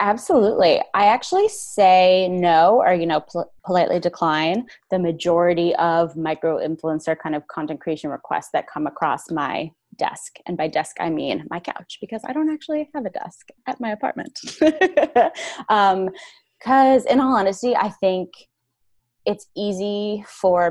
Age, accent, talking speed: 20-39, American, 150 wpm